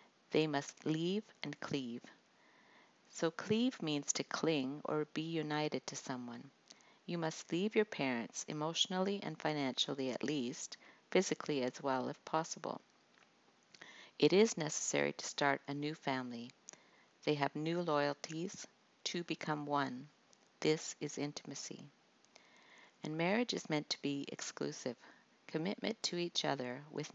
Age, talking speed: 50-69, 135 wpm